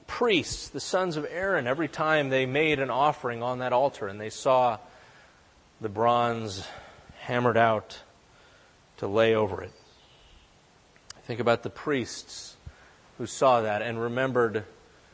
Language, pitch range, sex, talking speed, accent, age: English, 110-125 Hz, male, 135 wpm, American, 30-49